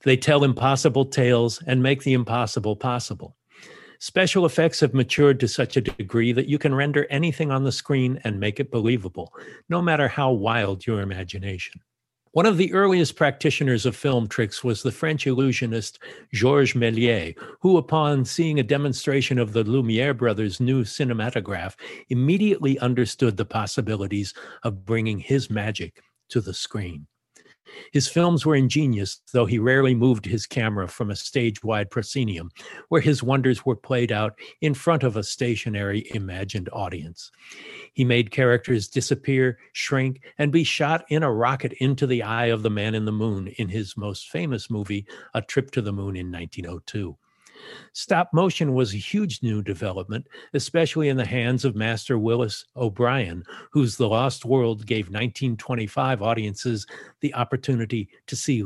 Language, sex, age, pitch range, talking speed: English, male, 50-69, 110-135 Hz, 160 wpm